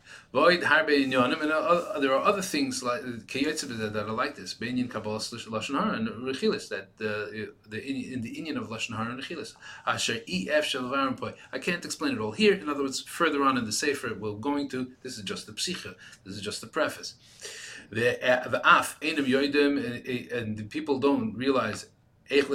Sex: male